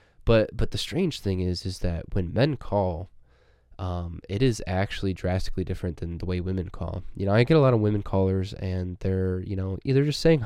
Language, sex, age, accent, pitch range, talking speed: English, male, 20-39, American, 95-105 Hz, 220 wpm